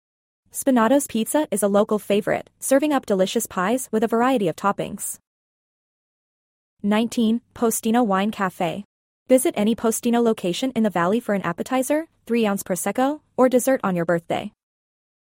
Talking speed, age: 140 wpm, 20-39